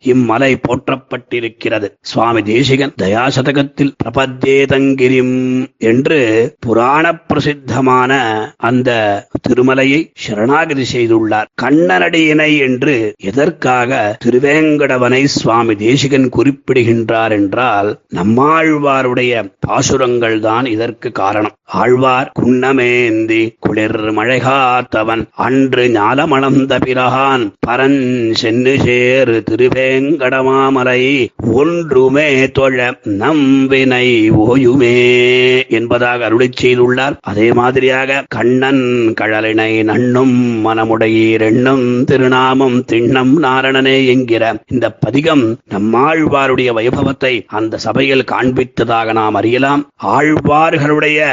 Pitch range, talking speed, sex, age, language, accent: 115-135 Hz, 75 wpm, male, 30-49, Tamil, native